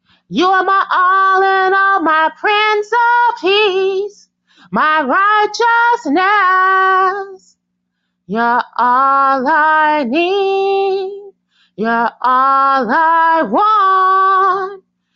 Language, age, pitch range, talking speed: English, 30-49, 310-395 Hz, 80 wpm